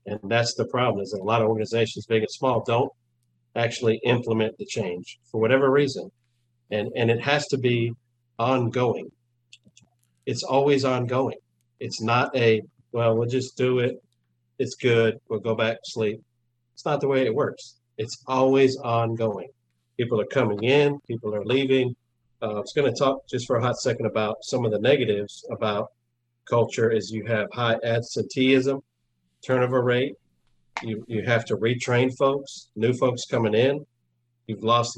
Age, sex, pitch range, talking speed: 50-69, male, 110-125 Hz, 170 wpm